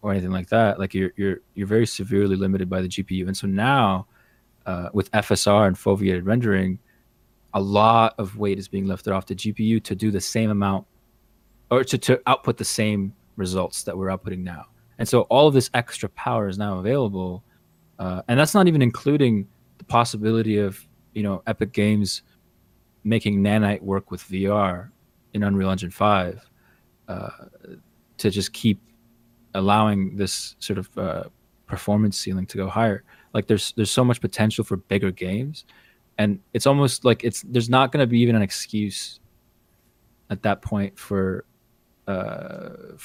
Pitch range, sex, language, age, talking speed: 95-115 Hz, male, English, 20-39, 170 wpm